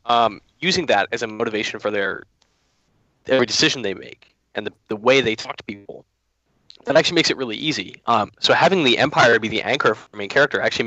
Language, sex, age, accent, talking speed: English, male, 10-29, American, 215 wpm